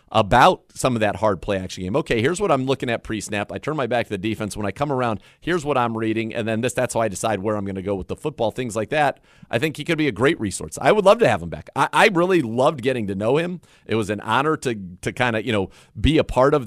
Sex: male